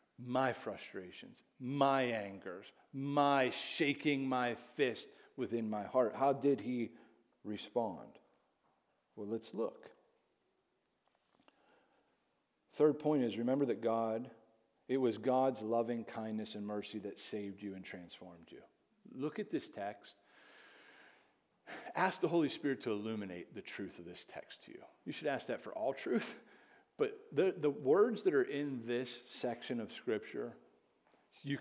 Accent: American